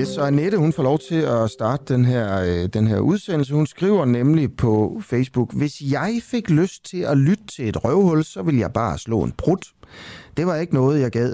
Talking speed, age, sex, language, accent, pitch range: 220 wpm, 30-49, male, Danish, native, 110-150 Hz